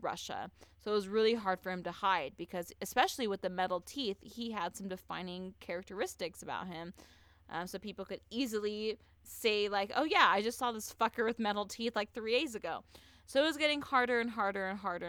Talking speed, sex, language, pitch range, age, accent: 210 wpm, female, English, 175-230 Hz, 20-39, American